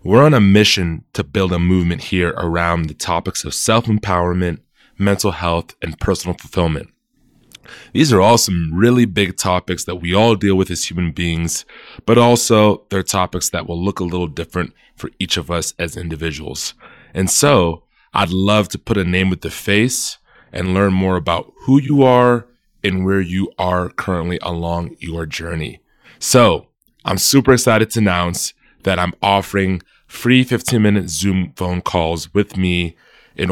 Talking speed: 165 wpm